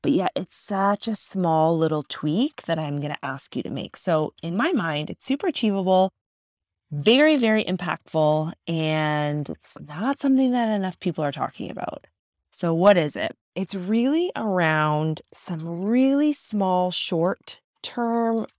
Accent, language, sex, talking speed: American, English, female, 150 wpm